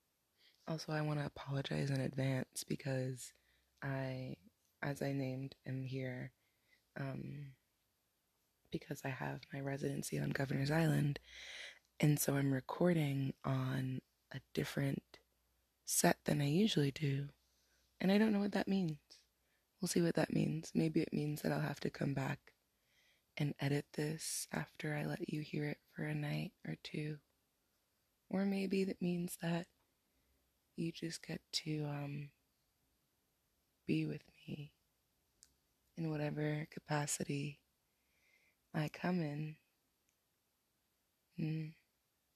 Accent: American